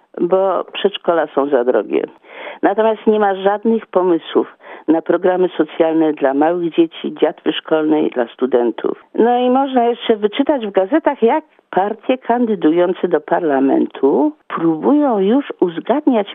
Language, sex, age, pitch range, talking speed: English, female, 50-69, 165-240 Hz, 130 wpm